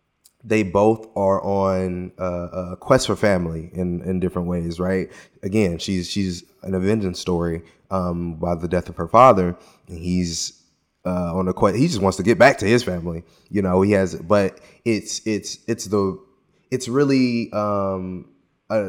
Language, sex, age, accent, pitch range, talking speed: English, male, 20-39, American, 95-115 Hz, 170 wpm